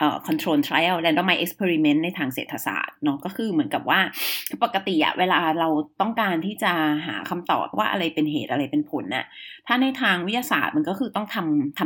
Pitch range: 170-285 Hz